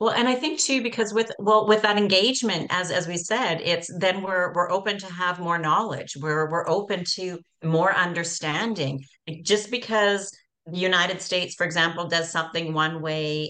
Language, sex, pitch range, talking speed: English, female, 150-195 Hz, 180 wpm